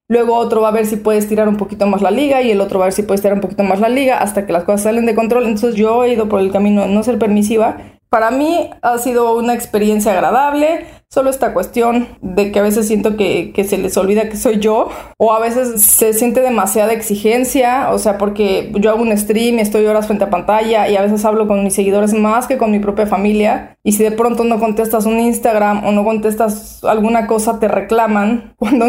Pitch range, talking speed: 210-240 Hz, 245 wpm